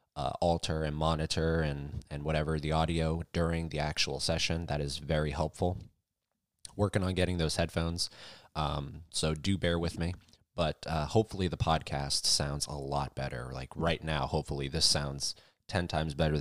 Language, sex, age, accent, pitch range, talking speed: English, male, 20-39, American, 75-85 Hz, 170 wpm